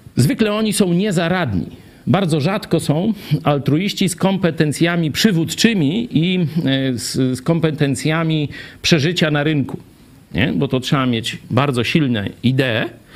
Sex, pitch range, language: male, 130-180 Hz, Polish